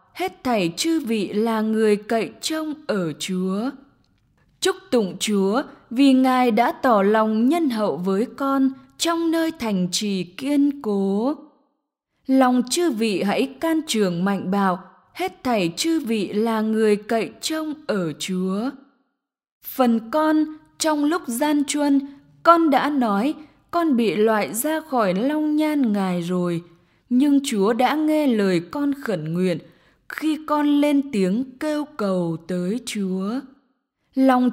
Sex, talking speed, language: female, 140 wpm, English